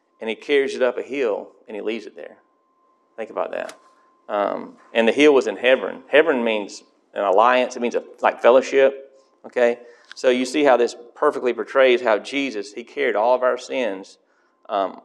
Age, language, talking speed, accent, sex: 30-49, English, 185 wpm, American, male